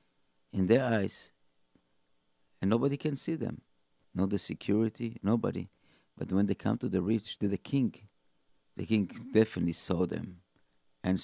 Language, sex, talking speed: English, male, 150 wpm